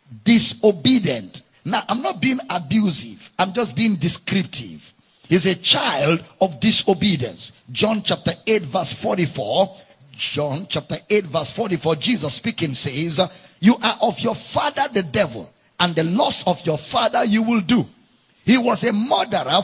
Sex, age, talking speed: male, 50-69, 145 wpm